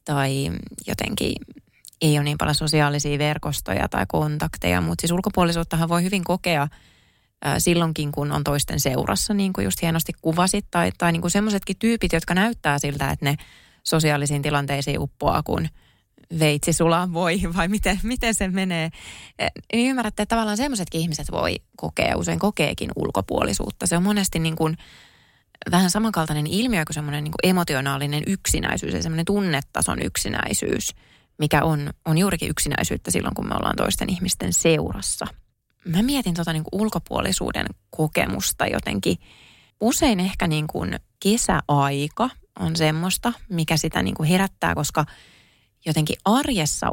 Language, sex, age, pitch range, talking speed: Finnish, female, 20-39, 145-185 Hz, 140 wpm